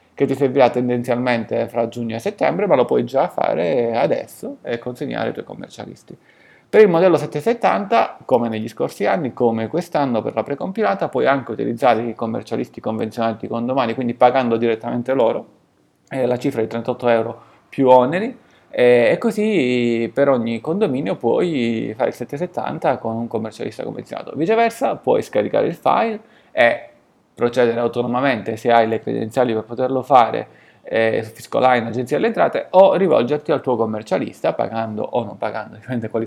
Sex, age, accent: male, 30-49, native